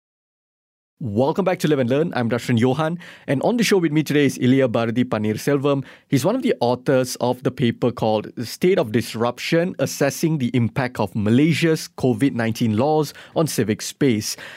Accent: Malaysian